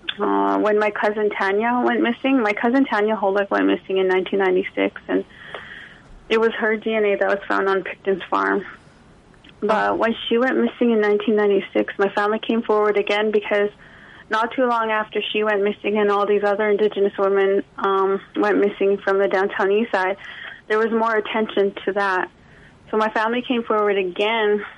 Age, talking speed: 20-39, 175 wpm